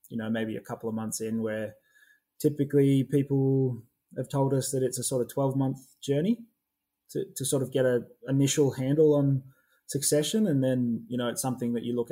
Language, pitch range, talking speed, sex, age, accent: English, 120-140 Hz, 200 wpm, male, 20-39, Australian